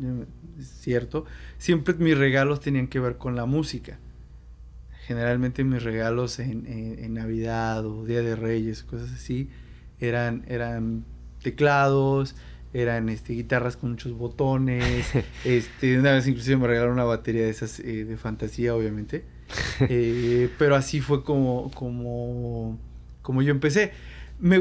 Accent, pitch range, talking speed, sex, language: Mexican, 115-140 Hz, 135 wpm, male, Spanish